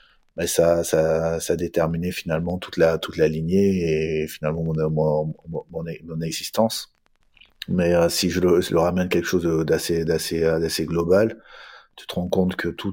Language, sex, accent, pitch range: French, male, French, 80-95 Hz